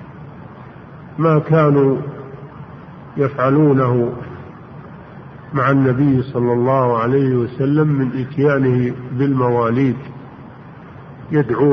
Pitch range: 125-150 Hz